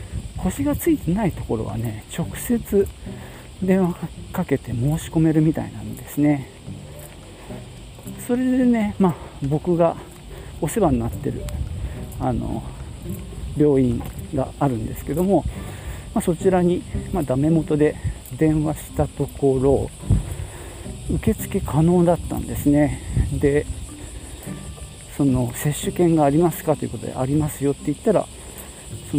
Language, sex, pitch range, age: Japanese, male, 115-170 Hz, 40-59